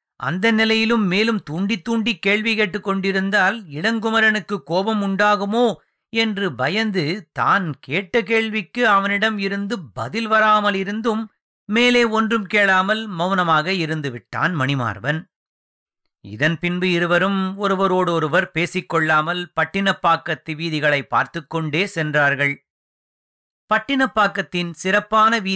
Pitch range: 155-205 Hz